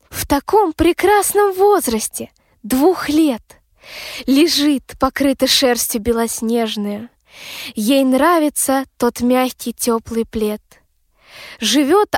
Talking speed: 85 wpm